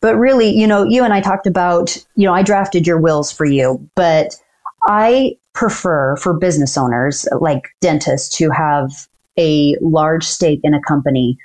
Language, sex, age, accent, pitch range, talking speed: English, female, 30-49, American, 155-205 Hz, 175 wpm